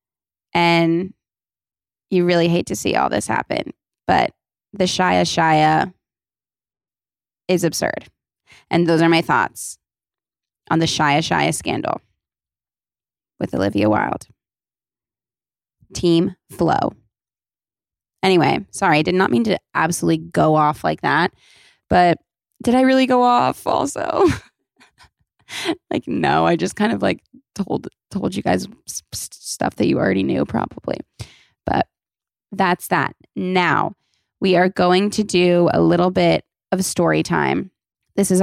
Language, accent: English, American